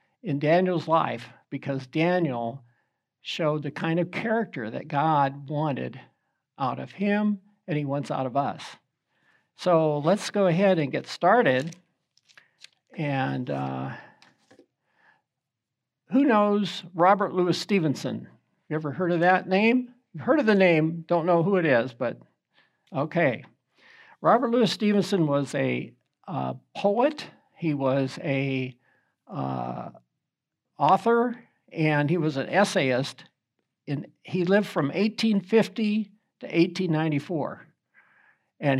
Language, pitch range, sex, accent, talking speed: English, 140-195 Hz, male, American, 120 wpm